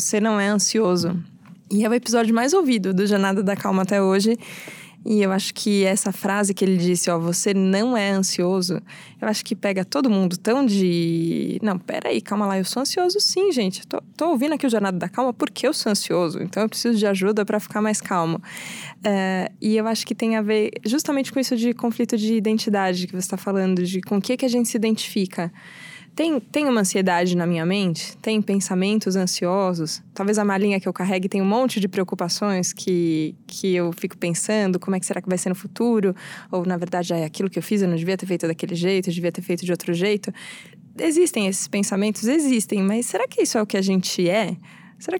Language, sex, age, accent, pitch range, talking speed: Portuguese, female, 20-39, Brazilian, 185-220 Hz, 225 wpm